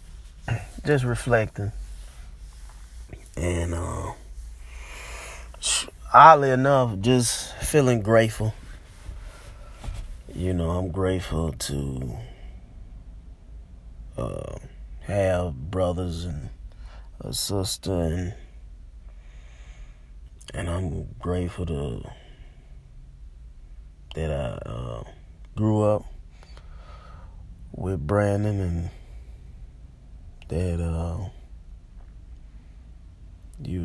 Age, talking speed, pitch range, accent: 20-39, 65 wpm, 70-95 Hz, American